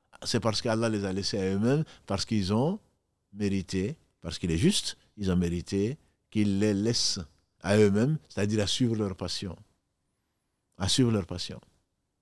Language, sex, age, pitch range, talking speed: French, male, 50-69, 95-120 Hz, 160 wpm